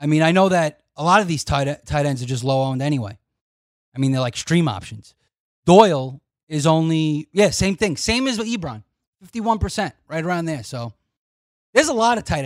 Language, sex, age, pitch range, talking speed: English, male, 30-49, 145-200 Hz, 195 wpm